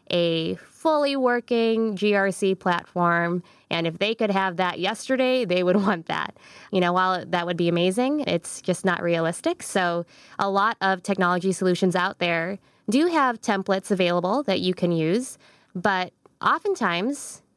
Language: English